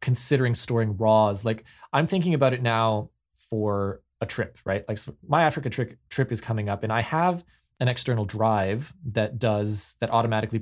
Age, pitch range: 20-39, 105-135 Hz